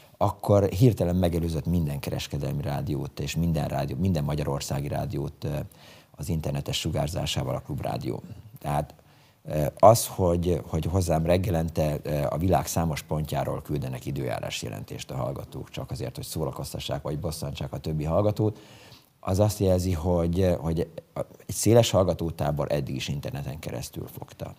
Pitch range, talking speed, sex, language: 75-95 Hz, 130 wpm, male, Hungarian